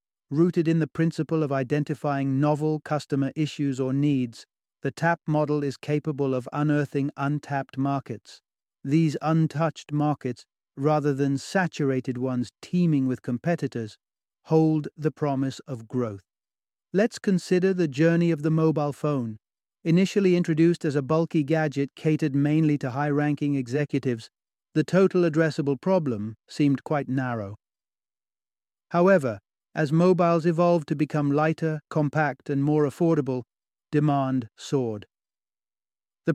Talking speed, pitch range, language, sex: 125 wpm, 130-160 Hz, English, male